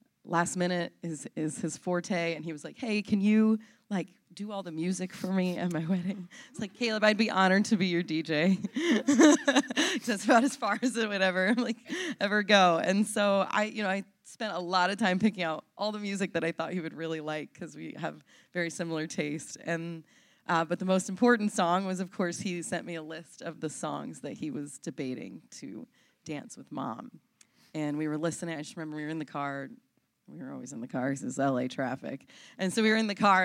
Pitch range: 160-200 Hz